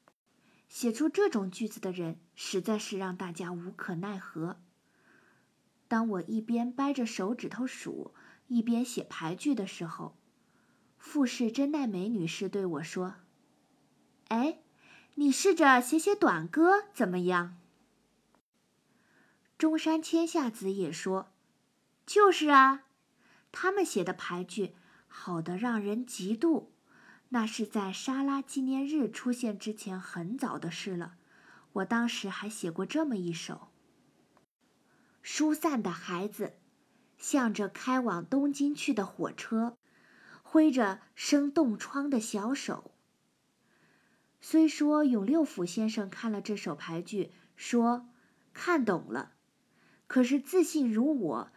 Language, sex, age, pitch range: Chinese, female, 20-39, 190-275 Hz